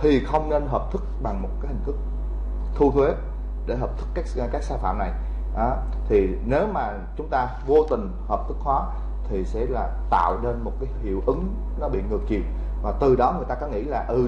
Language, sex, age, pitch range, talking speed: Vietnamese, male, 20-39, 175-250 Hz, 225 wpm